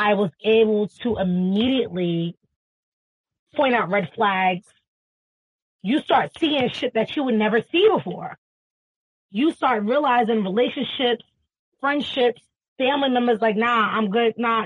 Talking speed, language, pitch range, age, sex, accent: 125 wpm, English, 185-250 Hz, 20-39, female, American